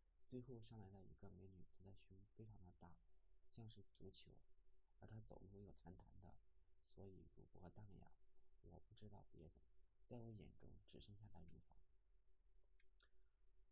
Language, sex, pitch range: Chinese, male, 80-105 Hz